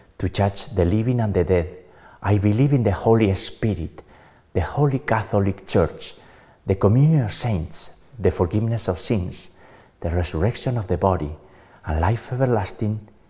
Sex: male